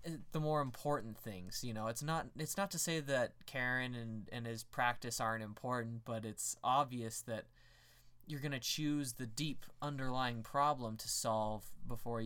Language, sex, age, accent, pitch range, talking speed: English, male, 20-39, American, 115-150 Hz, 170 wpm